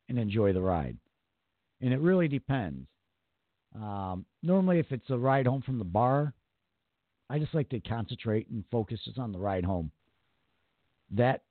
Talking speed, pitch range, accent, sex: 160 wpm, 95-135 Hz, American, male